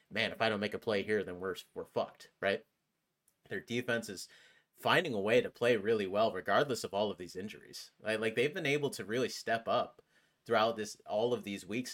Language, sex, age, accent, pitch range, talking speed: English, male, 30-49, American, 100-130 Hz, 220 wpm